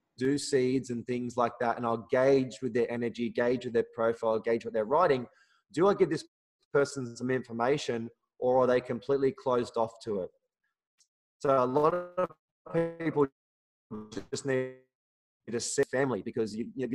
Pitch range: 115-145 Hz